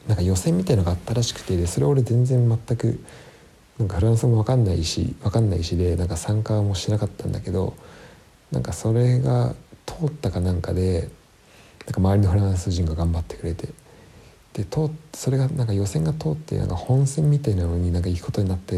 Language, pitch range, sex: Japanese, 90-120 Hz, male